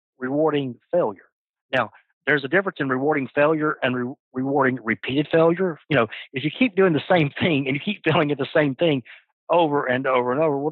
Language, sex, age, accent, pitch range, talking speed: English, male, 50-69, American, 125-165 Hz, 205 wpm